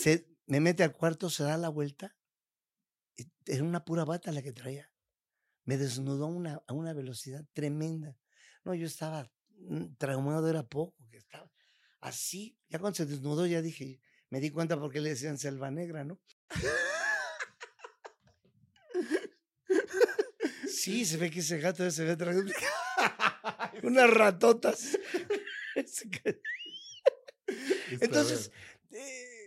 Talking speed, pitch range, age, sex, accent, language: 120 wpm, 155-230 Hz, 50-69, male, Mexican, Spanish